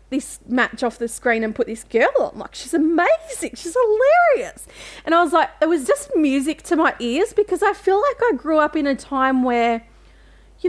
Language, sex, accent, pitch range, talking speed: English, female, Australian, 245-330 Hz, 215 wpm